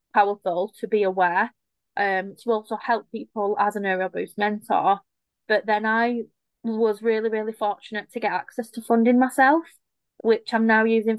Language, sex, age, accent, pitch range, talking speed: English, female, 20-39, British, 200-225 Hz, 170 wpm